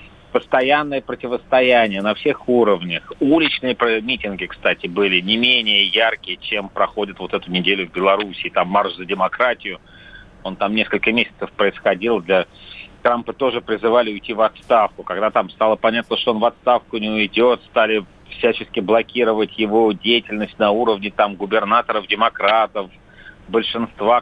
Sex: male